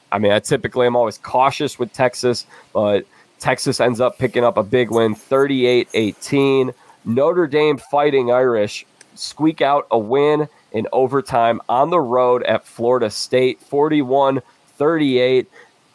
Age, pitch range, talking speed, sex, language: 20-39, 115-140 Hz, 135 wpm, male, English